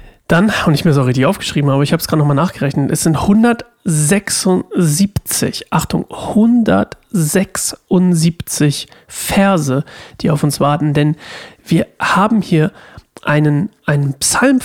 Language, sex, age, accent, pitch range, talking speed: German, male, 40-59, German, 150-190 Hz, 125 wpm